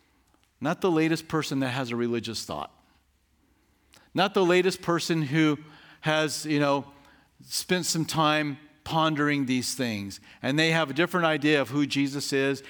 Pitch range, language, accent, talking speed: 120-160 Hz, English, American, 155 wpm